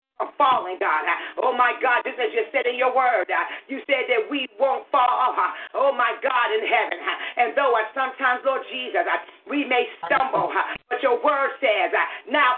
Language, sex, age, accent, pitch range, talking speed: English, female, 40-59, American, 245-285 Hz, 170 wpm